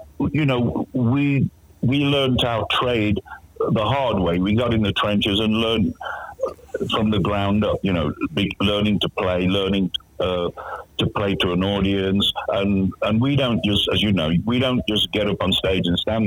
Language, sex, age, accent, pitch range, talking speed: English, male, 50-69, British, 95-125 Hz, 185 wpm